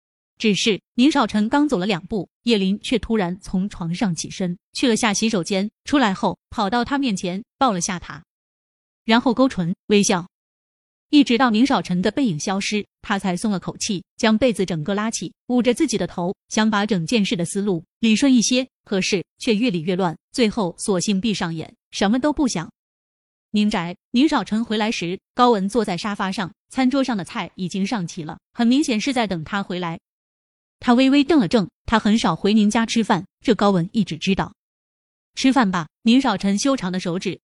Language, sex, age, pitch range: Chinese, female, 20-39, 185-240 Hz